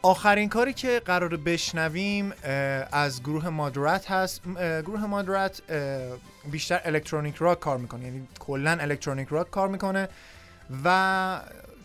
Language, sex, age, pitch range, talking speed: Persian, male, 20-39, 140-175 Hz, 115 wpm